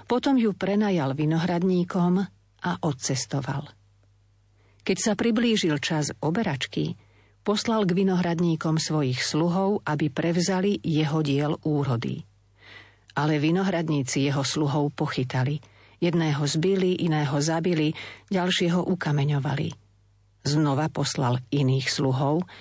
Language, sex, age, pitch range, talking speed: Slovak, female, 50-69, 120-170 Hz, 95 wpm